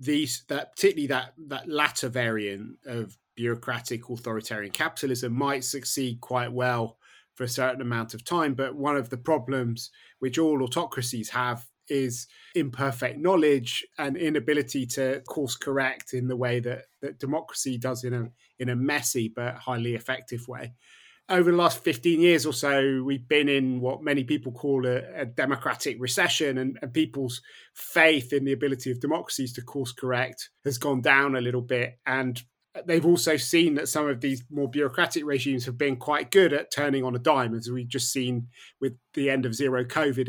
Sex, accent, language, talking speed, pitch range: male, British, English, 180 wpm, 125-145 Hz